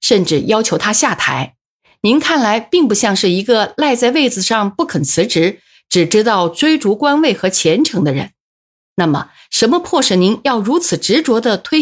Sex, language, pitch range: female, Chinese, 175-235 Hz